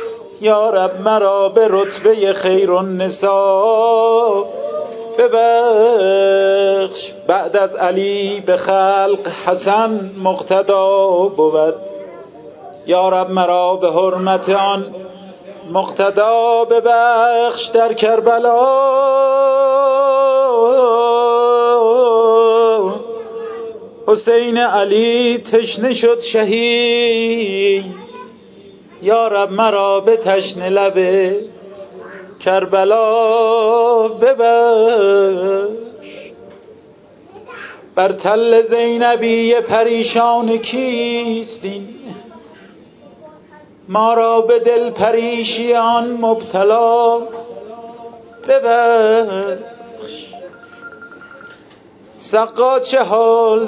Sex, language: male, Persian